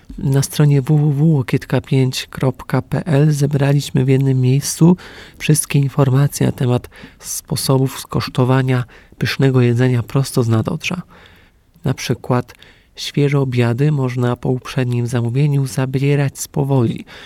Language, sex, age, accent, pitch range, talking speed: Polish, male, 40-59, native, 130-145 Hz, 100 wpm